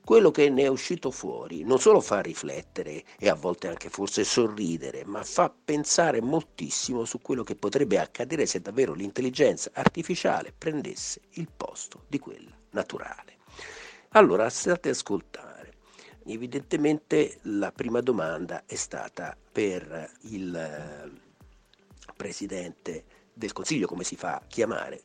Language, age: Italian, 50-69